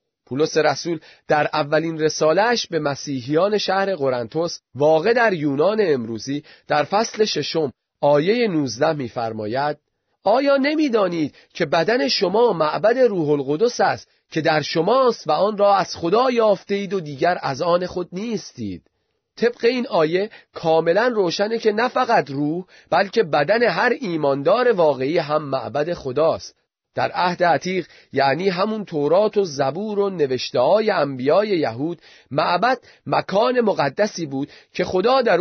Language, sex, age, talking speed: Persian, male, 30-49, 135 wpm